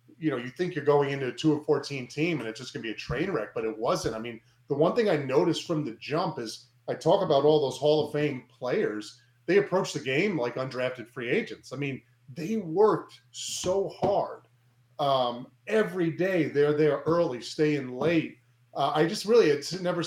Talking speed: 210 wpm